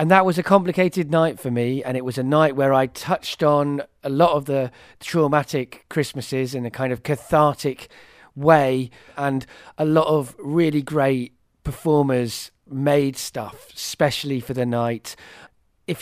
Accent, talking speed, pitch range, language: British, 160 wpm, 125-155 Hz, English